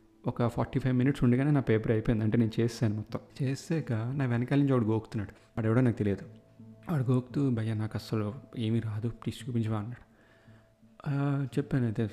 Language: Telugu